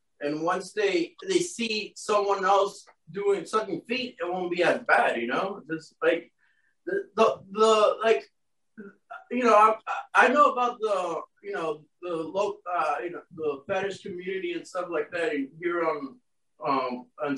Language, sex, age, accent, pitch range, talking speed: English, male, 30-49, American, 155-220 Hz, 170 wpm